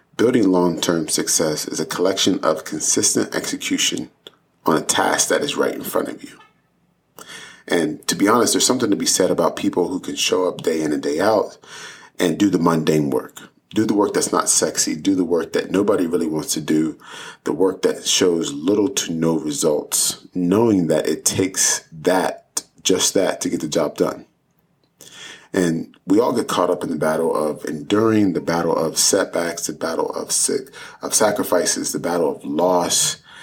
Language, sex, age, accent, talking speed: English, male, 30-49, American, 190 wpm